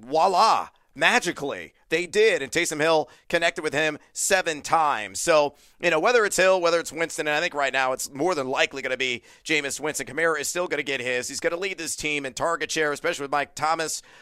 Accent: American